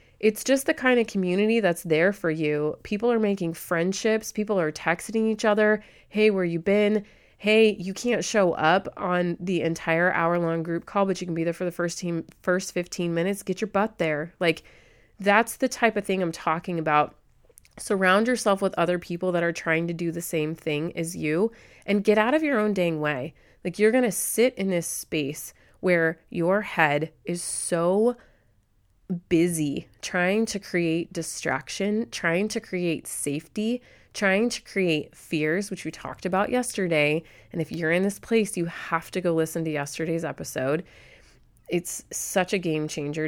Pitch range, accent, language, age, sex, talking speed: 165-210 Hz, American, English, 30-49, female, 180 wpm